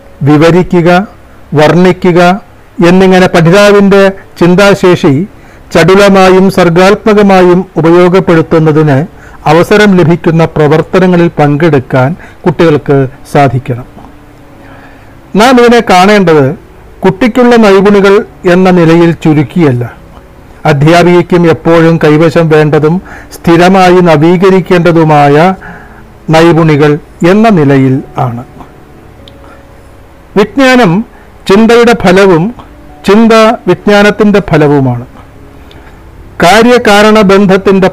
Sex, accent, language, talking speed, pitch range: male, native, Malayalam, 65 wpm, 150-195 Hz